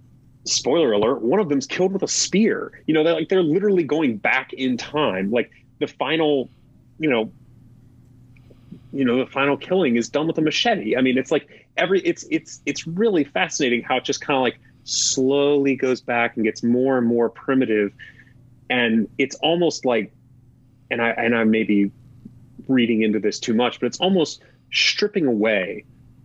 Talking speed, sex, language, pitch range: 180 wpm, male, English, 120-150 Hz